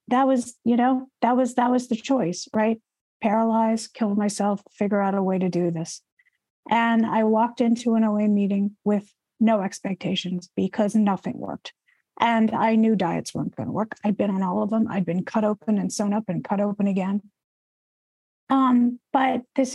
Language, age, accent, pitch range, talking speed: English, 50-69, American, 190-225 Hz, 190 wpm